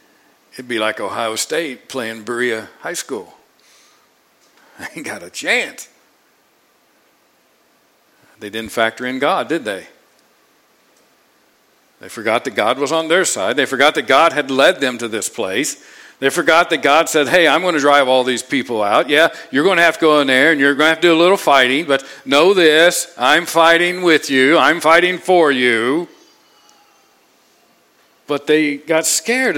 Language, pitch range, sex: English, 130-175 Hz, male